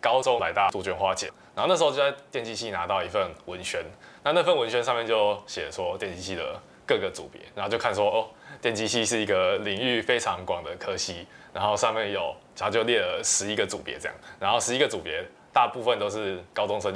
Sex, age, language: male, 20-39, Chinese